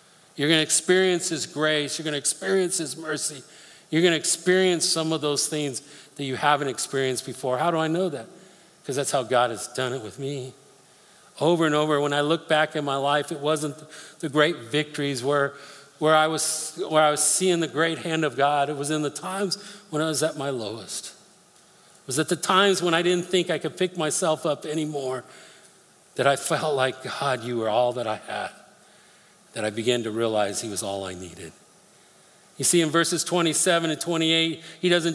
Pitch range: 145-165 Hz